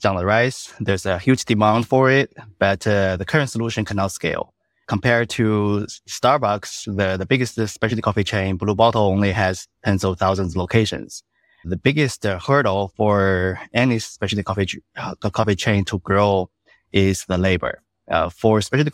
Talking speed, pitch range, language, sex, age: 170 wpm, 95-110 Hz, English, male, 20-39